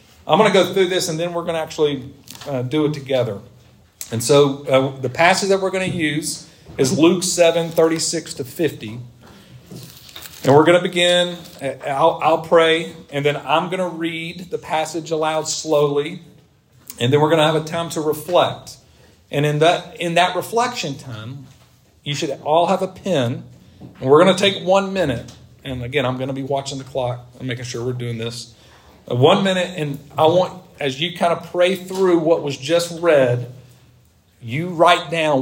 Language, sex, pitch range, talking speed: English, male, 130-170 Hz, 190 wpm